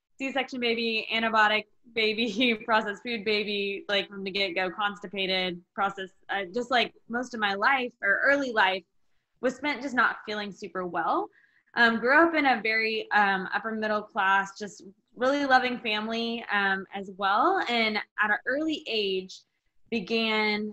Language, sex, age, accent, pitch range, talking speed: English, female, 20-39, American, 190-225 Hz, 155 wpm